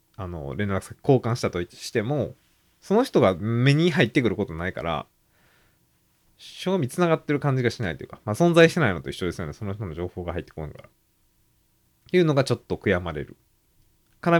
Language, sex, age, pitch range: Japanese, male, 20-39, 95-140 Hz